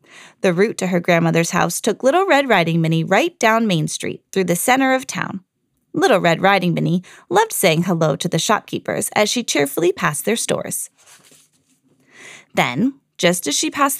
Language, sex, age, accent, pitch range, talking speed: English, female, 20-39, American, 170-280 Hz, 175 wpm